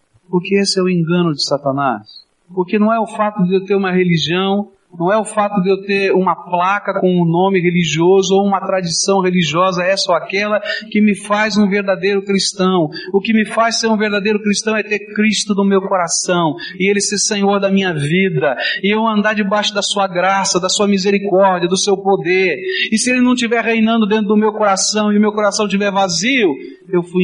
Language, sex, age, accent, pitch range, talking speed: Portuguese, male, 40-59, Brazilian, 160-205 Hz, 210 wpm